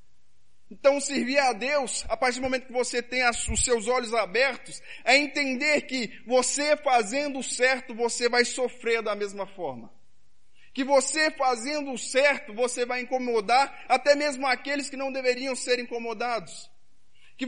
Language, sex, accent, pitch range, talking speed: Portuguese, male, Brazilian, 210-270 Hz, 155 wpm